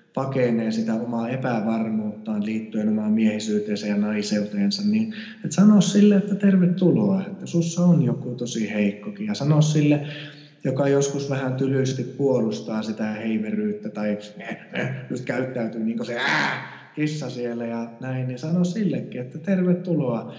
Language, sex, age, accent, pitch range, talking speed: Finnish, male, 20-39, native, 115-160 Hz, 130 wpm